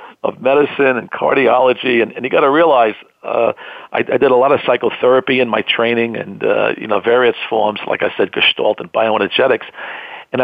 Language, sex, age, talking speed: English, male, 50-69, 190 wpm